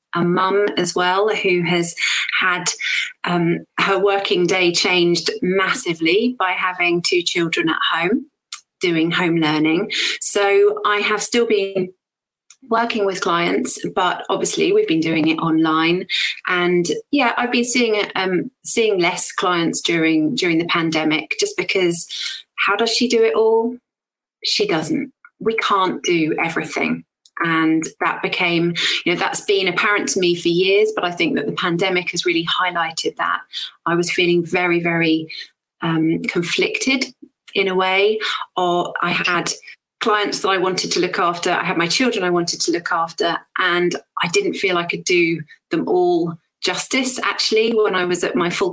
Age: 30-49